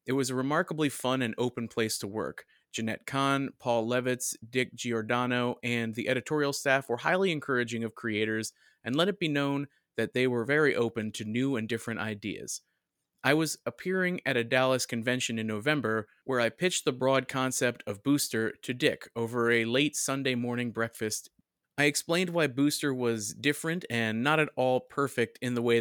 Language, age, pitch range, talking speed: English, 30-49, 115-140 Hz, 185 wpm